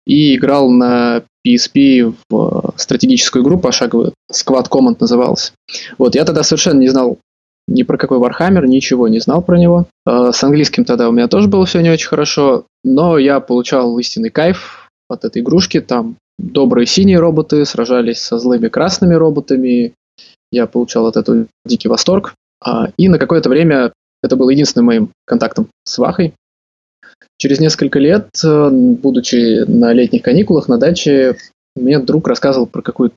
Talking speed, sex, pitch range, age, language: 155 wpm, male, 125-185 Hz, 20-39, Russian